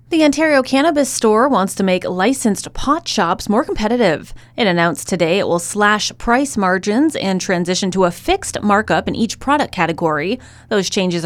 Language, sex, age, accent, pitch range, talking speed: English, female, 30-49, American, 175-225 Hz, 170 wpm